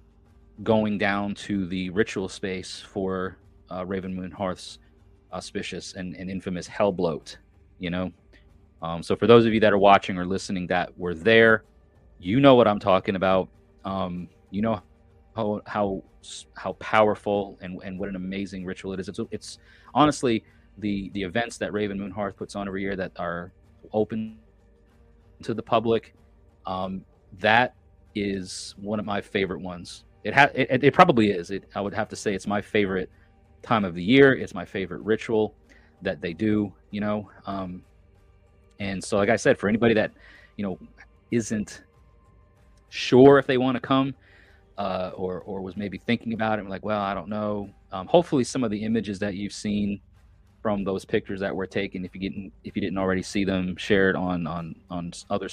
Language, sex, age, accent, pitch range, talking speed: English, male, 30-49, American, 90-105 Hz, 185 wpm